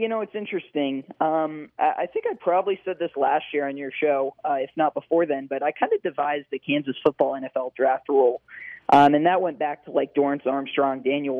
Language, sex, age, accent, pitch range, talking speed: English, male, 20-39, American, 140-175 Hz, 220 wpm